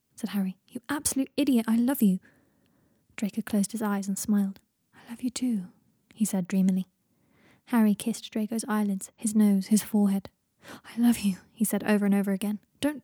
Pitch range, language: 195-240 Hz, English